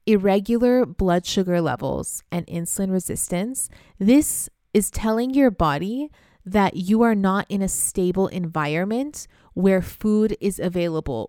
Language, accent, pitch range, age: English, American, 175-215 Hz, 20-39